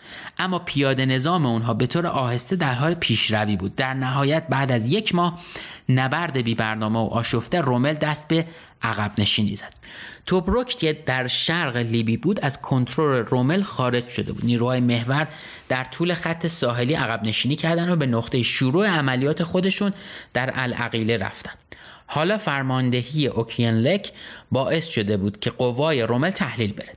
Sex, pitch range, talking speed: male, 115-155 Hz, 150 wpm